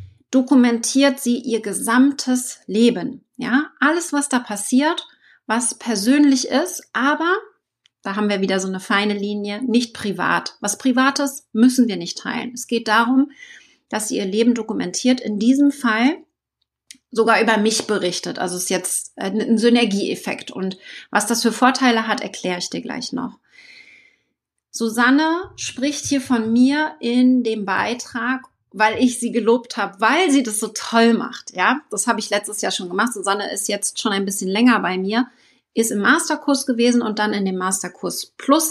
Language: German